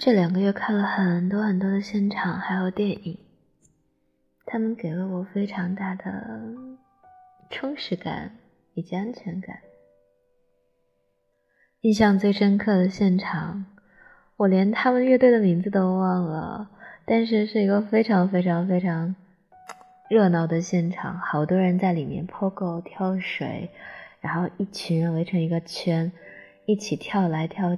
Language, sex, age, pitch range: Chinese, female, 20-39, 175-210 Hz